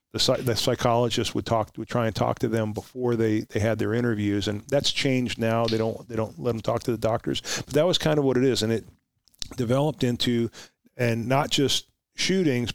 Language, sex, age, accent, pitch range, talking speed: English, male, 40-59, American, 115-130 Hz, 220 wpm